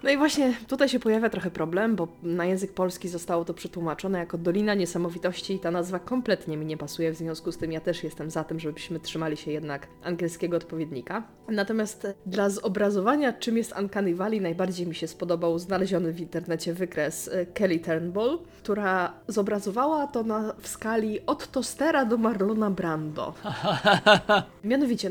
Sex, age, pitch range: female, 20-39, 175-220 Hz